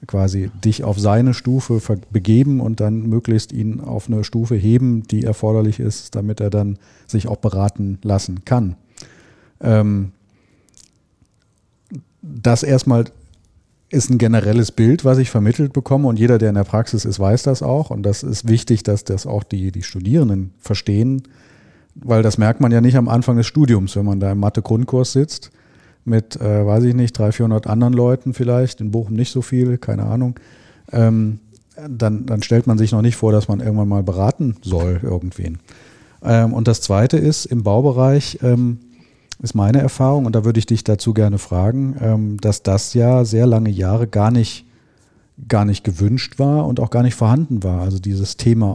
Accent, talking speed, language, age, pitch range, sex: German, 180 wpm, German, 40-59, 105-125 Hz, male